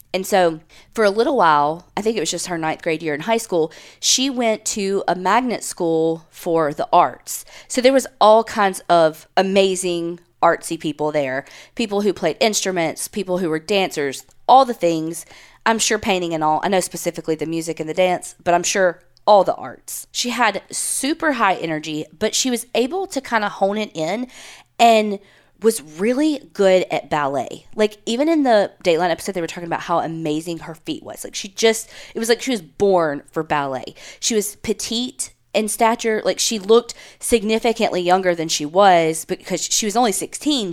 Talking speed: 195 wpm